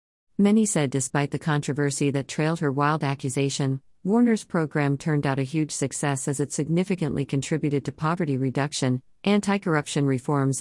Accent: American